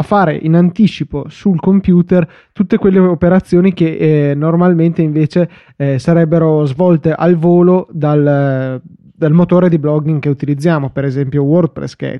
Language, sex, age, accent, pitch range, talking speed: Italian, male, 20-39, native, 145-165 Hz, 145 wpm